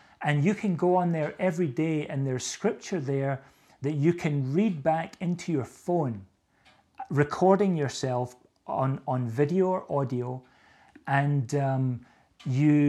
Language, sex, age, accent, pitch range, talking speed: English, male, 40-59, British, 135-170 Hz, 140 wpm